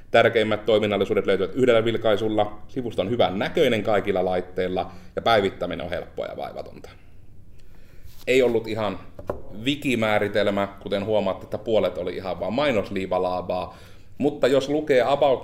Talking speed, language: 125 wpm, Finnish